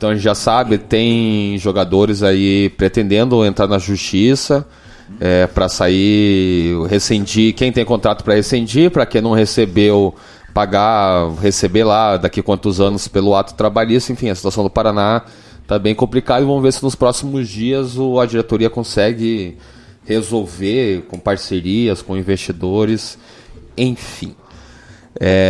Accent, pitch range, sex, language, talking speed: Brazilian, 100-120 Hz, male, Portuguese, 135 wpm